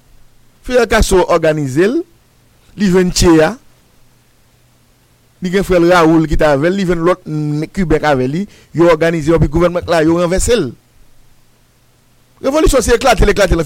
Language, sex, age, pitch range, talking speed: English, male, 50-69, 180-255 Hz, 85 wpm